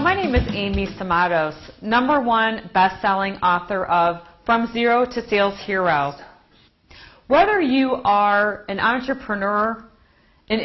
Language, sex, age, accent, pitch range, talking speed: English, female, 40-59, American, 190-240 Hz, 120 wpm